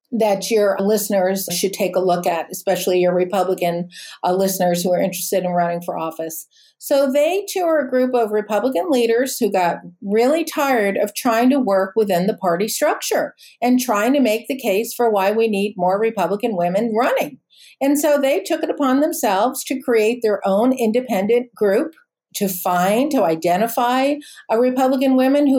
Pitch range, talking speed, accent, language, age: 195-265 Hz, 180 wpm, American, English, 50-69